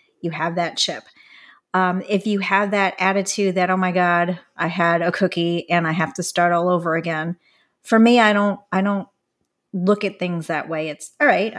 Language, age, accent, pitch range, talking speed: English, 40-59, American, 170-200 Hz, 205 wpm